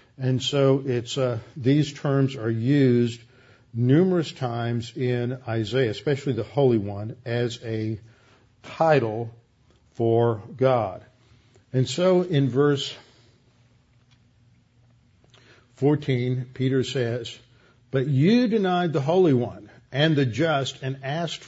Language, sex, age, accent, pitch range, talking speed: English, male, 50-69, American, 120-140 Hz, 110 wpm